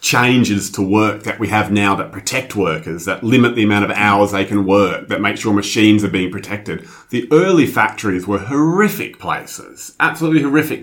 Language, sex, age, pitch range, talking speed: English, male, 30-49, 105-145 Hz, 190 wpm